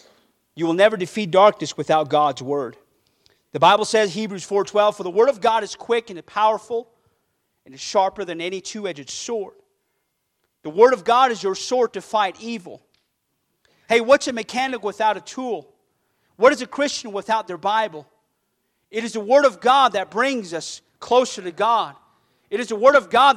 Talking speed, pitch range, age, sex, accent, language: 180 wpm, 205-285 Hz, 40-59, male, American, English